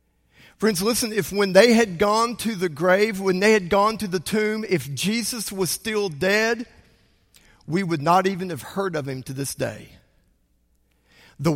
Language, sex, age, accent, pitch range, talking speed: English, male, 50-69, American, 150-215 Hz, 175 wpm